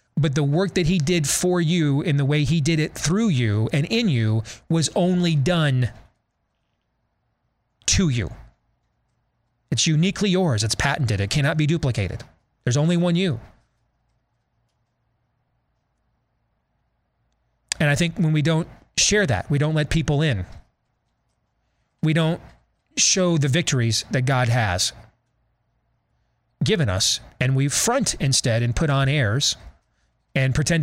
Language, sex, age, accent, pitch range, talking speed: English, male, 30-49, American, 120-155 Hz, 135 wpm